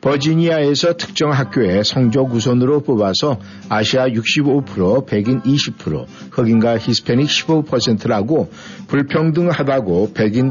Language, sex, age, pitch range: Korean, male, 50-69, 115-150 Hz